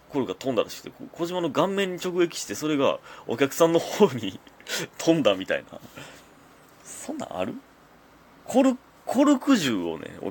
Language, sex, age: Japanese, male, 30-49